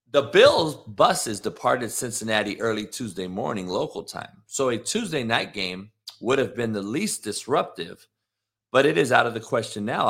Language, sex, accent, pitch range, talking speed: English, male, American, 100-135 Hz, 170 wpm